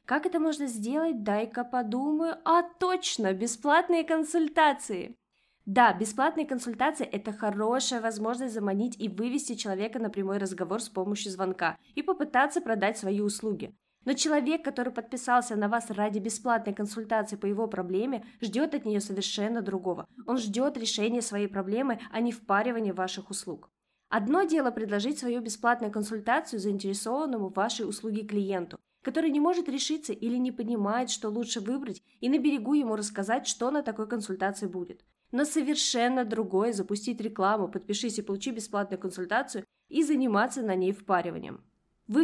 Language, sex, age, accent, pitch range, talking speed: Russian, female, 20-39, native, 210-265 Hz, 150 wpm